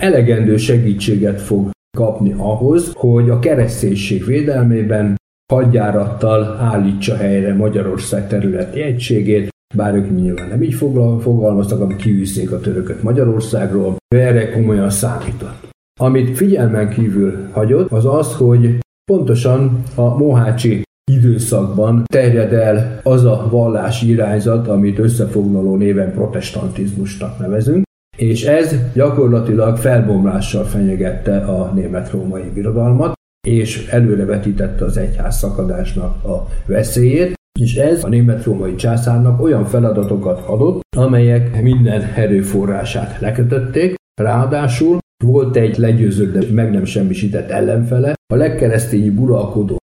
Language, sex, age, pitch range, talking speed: Hungarian, male, 50-69, 100-125 Hz, 105 wpm